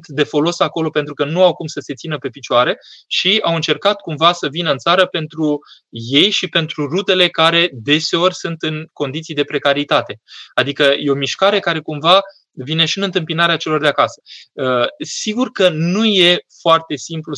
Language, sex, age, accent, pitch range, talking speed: Romanian, male, 20-39, native, 140-165 Hz, 180 wpm